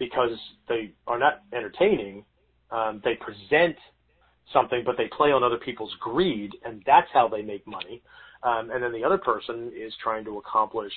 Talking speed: 175 wpm